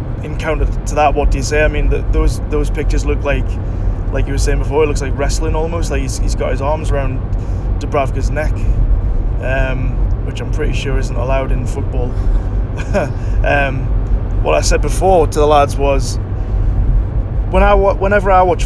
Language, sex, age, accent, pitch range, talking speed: English, male, 20-39, British, 100-125 Hz, 185 wpm